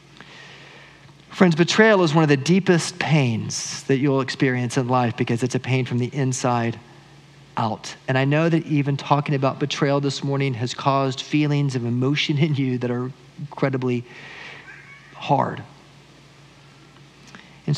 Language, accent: English, American